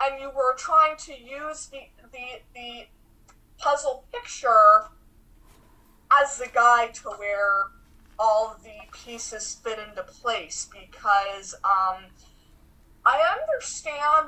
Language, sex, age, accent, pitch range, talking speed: English, female, 20-39, American, 195-245 Hz, 110 wpm